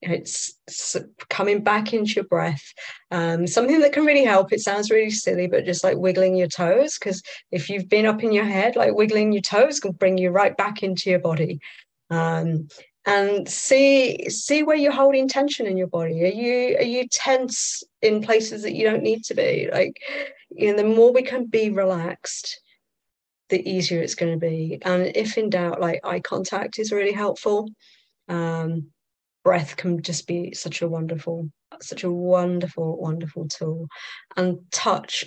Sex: female